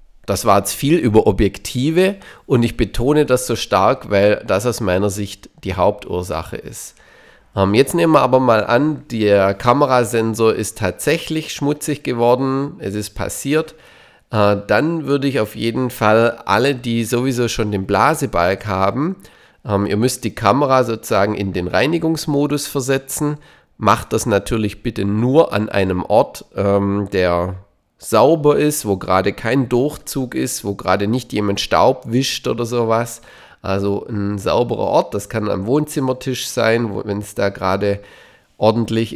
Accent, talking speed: German, 155 wpm